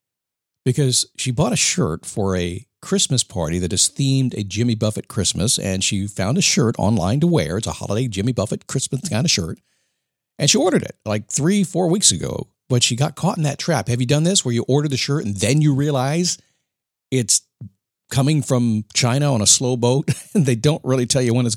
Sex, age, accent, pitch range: male, 50-69, American, 110-145 Hz